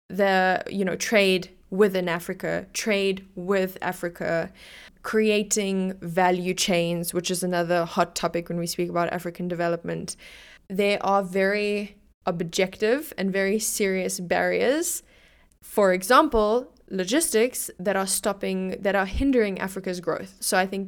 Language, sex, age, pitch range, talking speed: English, female, 20-39, 185-205 Hz, 130 wpm